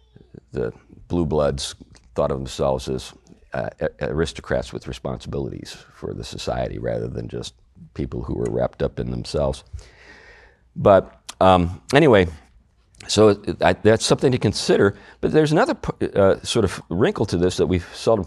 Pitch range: 75-105 Hz